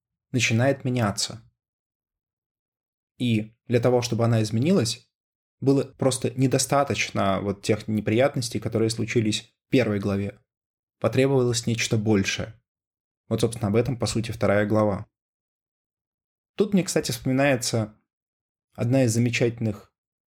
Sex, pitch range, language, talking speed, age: male, 105-125 Hz, Russian, 110 wpm, 20-39